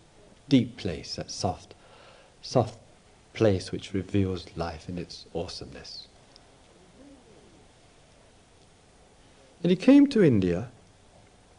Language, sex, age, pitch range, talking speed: English, male, 60-79, 105-155 Hz, 90 wpm